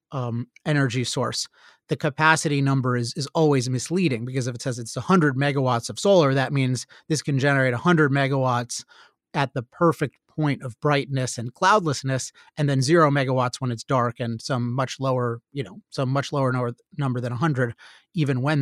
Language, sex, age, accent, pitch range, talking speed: English, male, 30-49, American, 130-155 Hz, 180 wpm